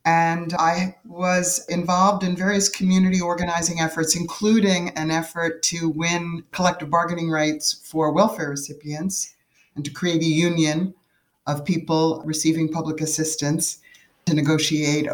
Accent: American